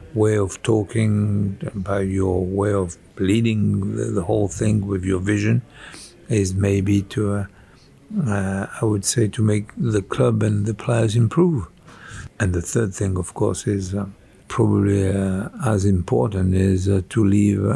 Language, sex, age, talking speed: English, male, 60-79, 160 wpm